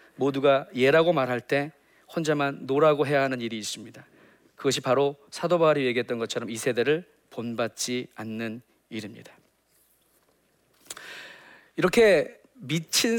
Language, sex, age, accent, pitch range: Korean, male, 40-59, native, 130-180 Hz